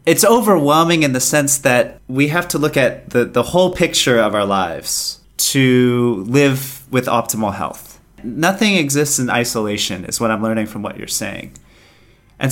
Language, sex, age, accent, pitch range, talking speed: English, male, 30-49, American, 120-150 Hz, 175 wpm